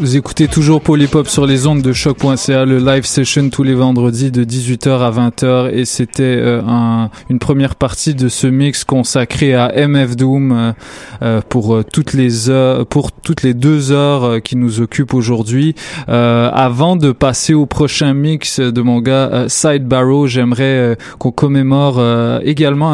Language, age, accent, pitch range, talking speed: French, 20-39, French, 120-145 Hz, 175 wpm